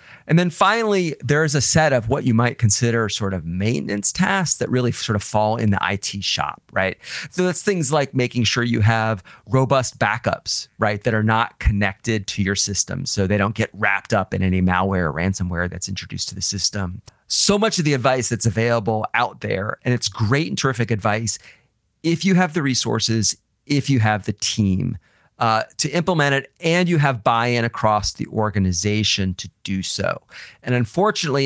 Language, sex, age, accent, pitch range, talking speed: English, male, 40-59, American, 105-135 Hz, 195 wpm